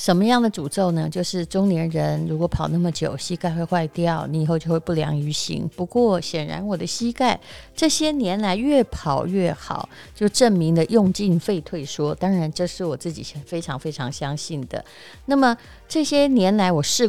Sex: female